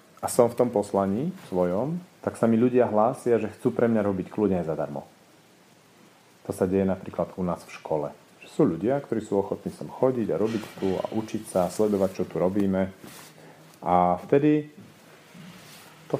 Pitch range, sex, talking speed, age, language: 95-125 Hz, male, 180 wpm, 40-59, Slovak